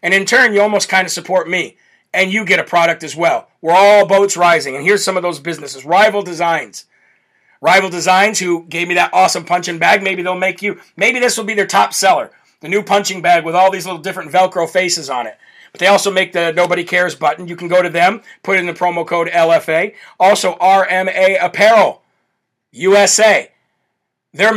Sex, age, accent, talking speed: male, 40-59, American, 210 wpm